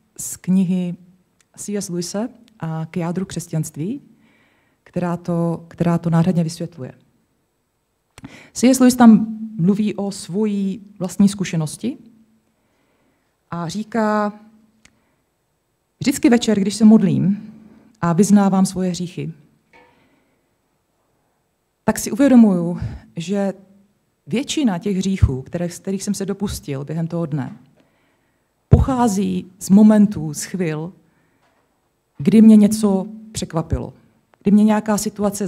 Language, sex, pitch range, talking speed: Czech, female, 170-215 Hz, 100 wpm